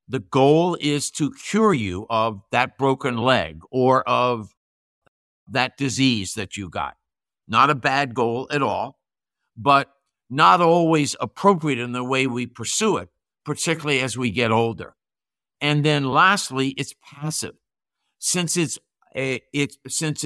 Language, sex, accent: English, male, American